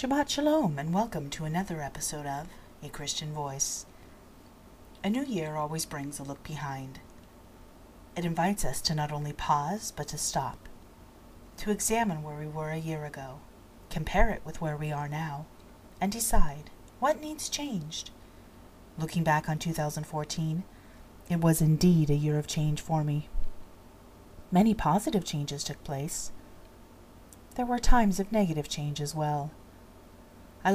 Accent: American